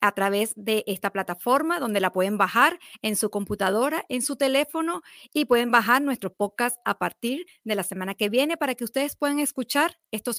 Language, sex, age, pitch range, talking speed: Spanish, female, 40-59, 200-275 Hz, 190 wpm